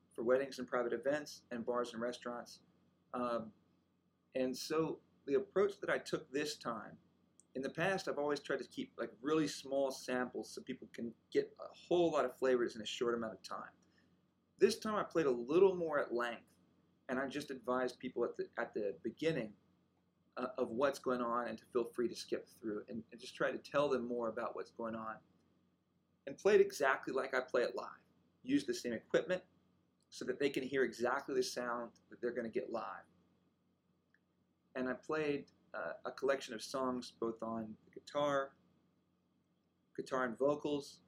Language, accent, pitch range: English, American, 115-150 Hz